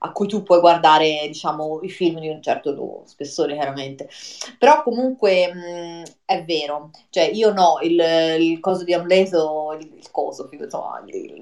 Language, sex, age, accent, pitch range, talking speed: Italian, female, 30-49, native, 160-200 Hz, 150 wpm